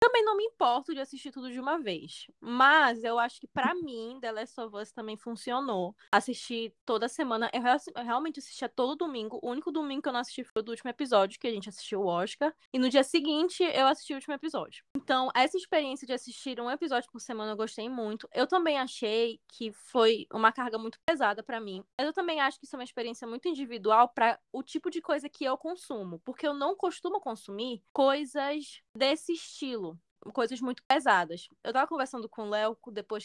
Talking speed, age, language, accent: 210 wpm, 10-29, Portuguese, Brazilian